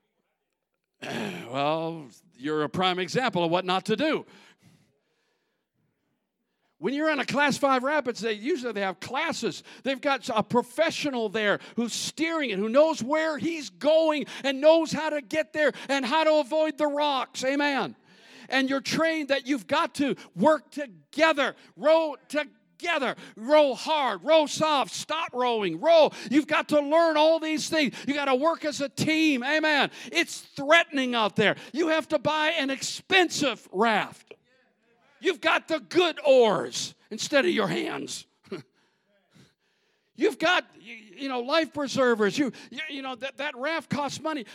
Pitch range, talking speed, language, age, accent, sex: 240-310 Hz, 160 wpm, English, 50-69, American, male